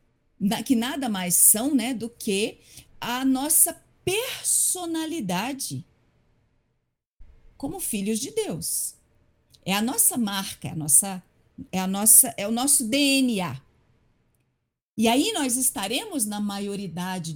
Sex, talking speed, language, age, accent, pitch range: female, 105 wpm, Portuguese, 50-69, Brazilian, 185-305 Hz